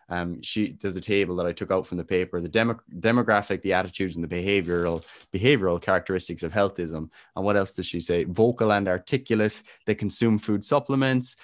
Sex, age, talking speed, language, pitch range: male, 20-39, 190 wpm, English, 85-105 Hz